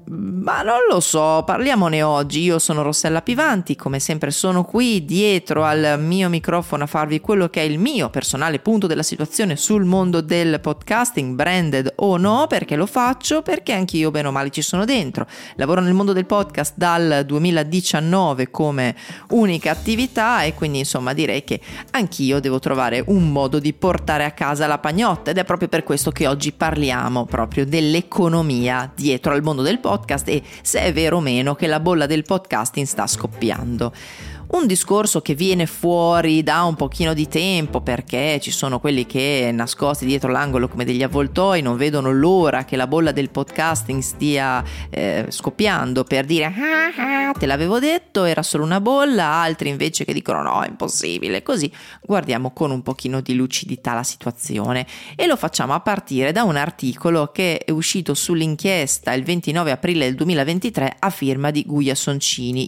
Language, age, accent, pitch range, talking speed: Italian, 30-49, native, 140-185 Hz, 175 wpm